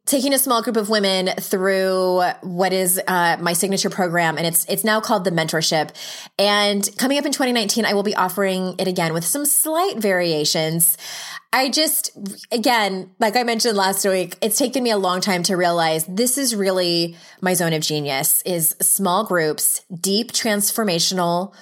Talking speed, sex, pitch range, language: 175 wpm, female, 185-265 Hz, English